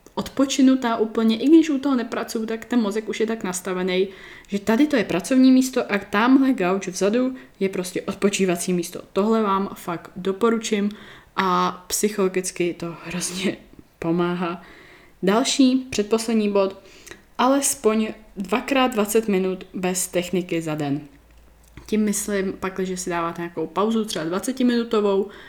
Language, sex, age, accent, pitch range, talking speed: Czech, female, 20-39, native, 175-215 Hz, 135 wpm